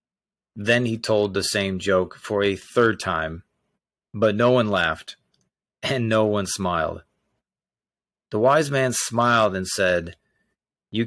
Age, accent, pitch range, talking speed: 30-49, American, 95-110 Hz, 135 wpm